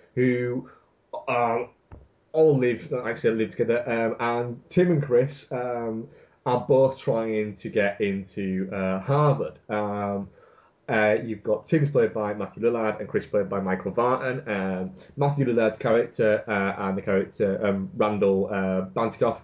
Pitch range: 100-125 Hz